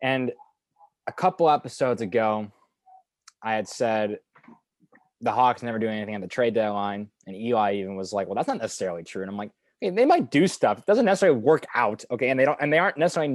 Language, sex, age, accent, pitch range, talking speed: English, male, 20-39, American, 105-150 Hz, 215 wpm